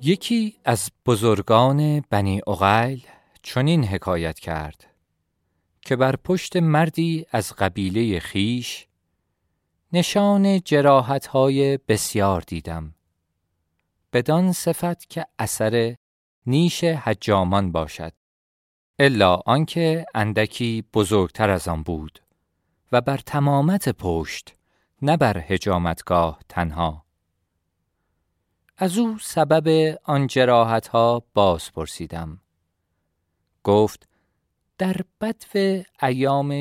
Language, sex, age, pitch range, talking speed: Persian, male, 40-59, 90-140 Hz, 85 wpm